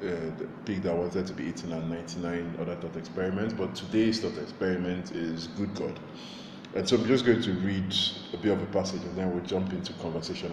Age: 20-39